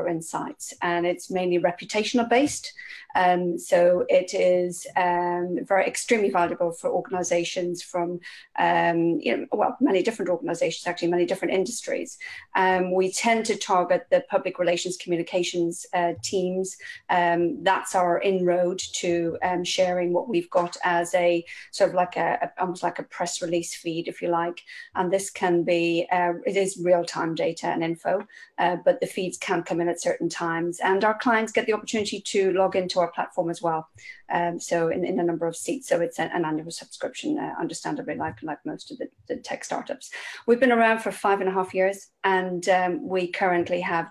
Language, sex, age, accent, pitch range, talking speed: English, female, 30-49, British, 175-200 Hz, 185 wpm